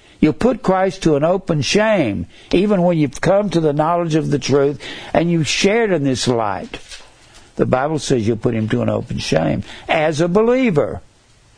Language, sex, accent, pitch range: English, male, American, 115-175 Hz